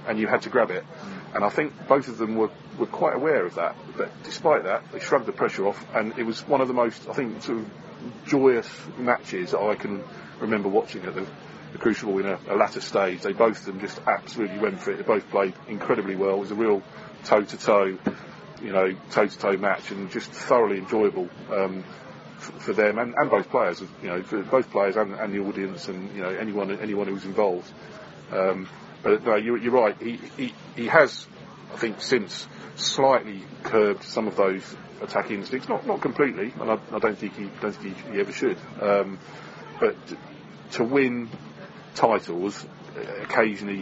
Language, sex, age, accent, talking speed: English, male, 30-49, British, 200 wpm